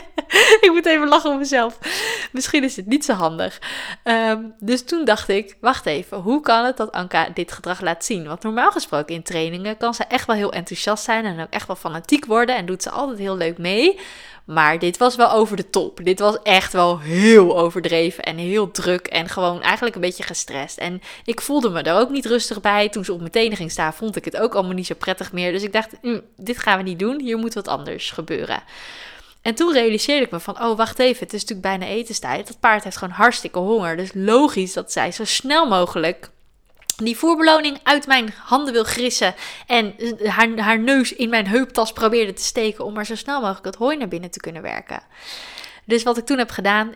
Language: Dutch